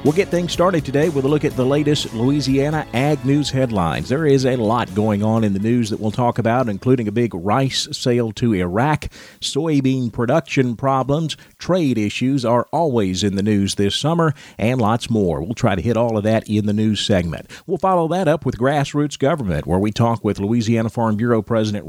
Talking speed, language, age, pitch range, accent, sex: 210 wpm, English, 40-59, 110-140 Hz, American, male